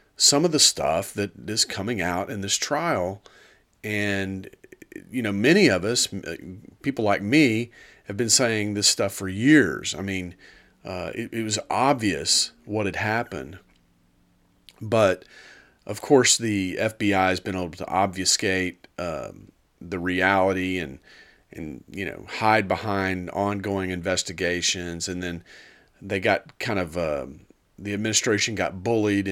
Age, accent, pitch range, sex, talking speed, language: 40-59, American, 95-110 Hz, male, 140 wpm, English